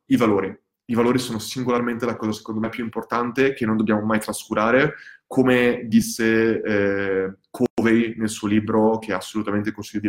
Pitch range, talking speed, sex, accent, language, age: 110-145 Hz, 165 wpm, male, native, Italian, 20-39